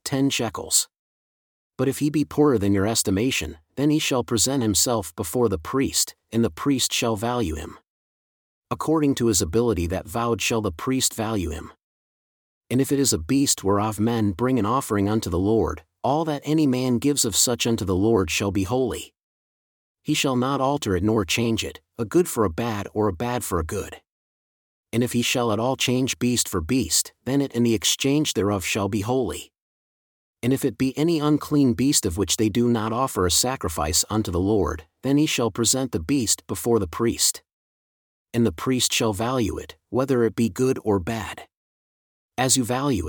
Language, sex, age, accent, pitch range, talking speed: English, male, 40-59, American, 100-130 Hz, 200 wpm